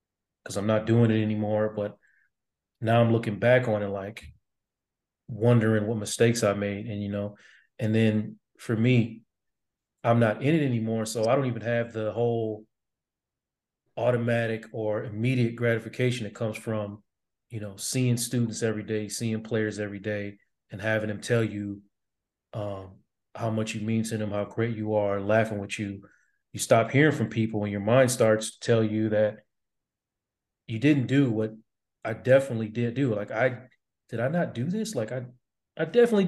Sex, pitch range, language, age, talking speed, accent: male, 105-120 Hz, English, 30-49, 175 wpm, American